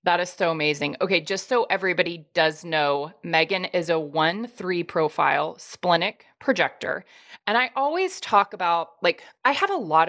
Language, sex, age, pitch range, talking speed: English, female, 30-49, 170-245 Hz, 165 wpm